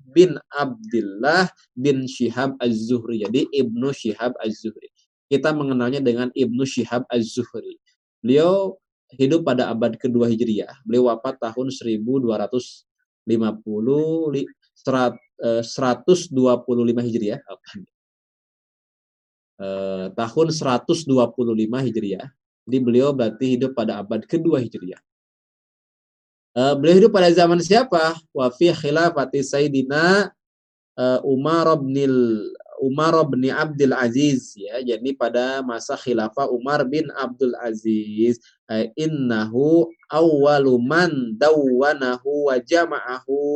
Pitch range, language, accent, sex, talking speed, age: 120-155 Hz, Indonesian, native, male, 100 wpm, 20-39